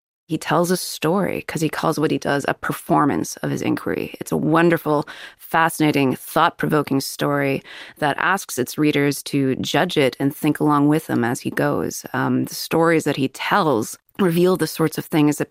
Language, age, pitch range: English, 20-39, 140-170 Hz